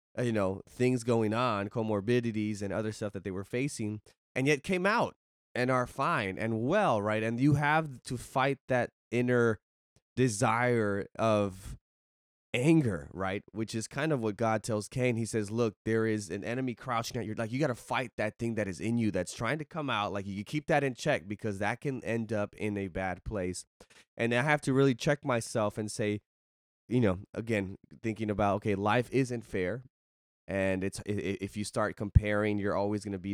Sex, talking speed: male, 200 wpm